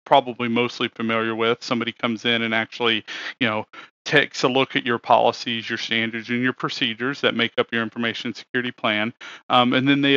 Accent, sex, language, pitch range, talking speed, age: American, male, English, 115-125 Hz, 195 wpm, 40-59